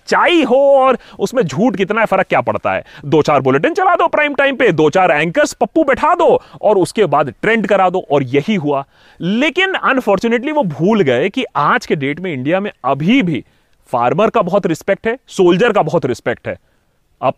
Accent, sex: native, male